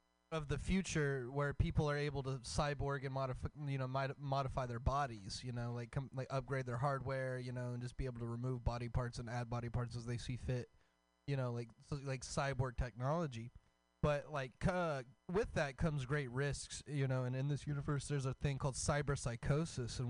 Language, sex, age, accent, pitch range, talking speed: English, male, 20-39, American, 120-150 Hz, 210 wpm